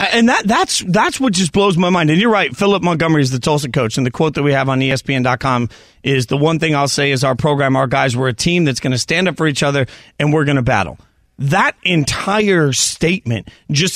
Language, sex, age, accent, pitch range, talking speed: English, male, 40-59, American, 135-180 Hz, 245 wpm